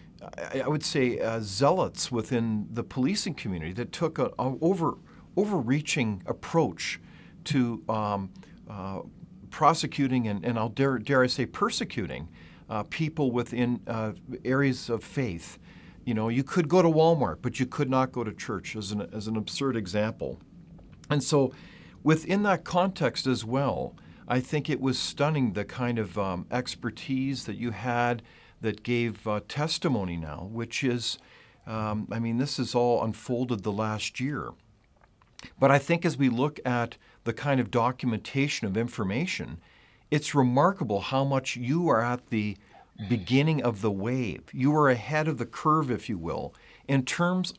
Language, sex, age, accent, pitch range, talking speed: English, male, 50-69, American, 110-145 Hz, 160 wpm